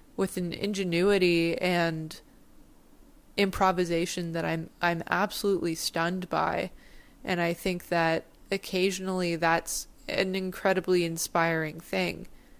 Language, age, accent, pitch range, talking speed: English, 20-39, American, 170-235 Hz, 100 wpm